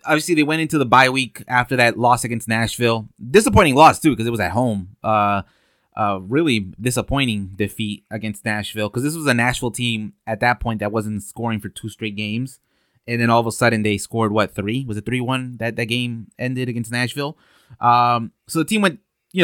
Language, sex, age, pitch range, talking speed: English, male, 20-39, 115-135 Hz, 210 wpm